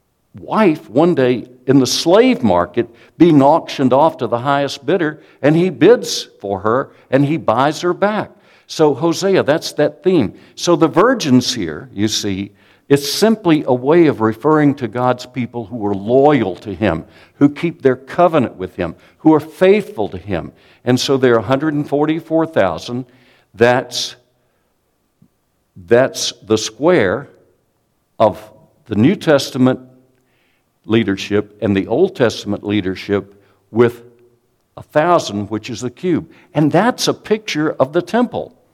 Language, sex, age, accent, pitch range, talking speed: English, male, 60-79, American, 110-155 Hz, 145 wpm